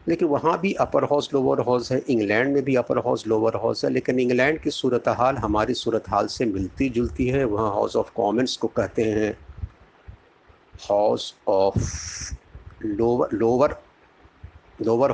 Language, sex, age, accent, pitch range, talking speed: Hindi, male, 50-69, native, 105-140 Hz, 155 wpm